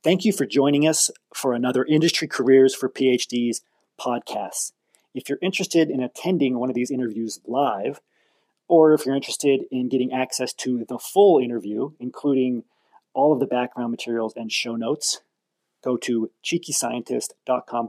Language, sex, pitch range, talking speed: English, male, 115-135 Hz, 150 wpm